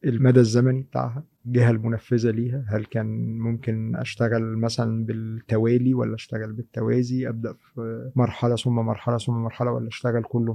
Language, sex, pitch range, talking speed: Arabic, male, 115-140 Hz, 140 wpm